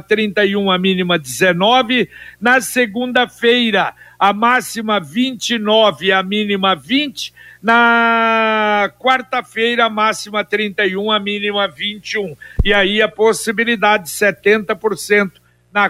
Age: 60-79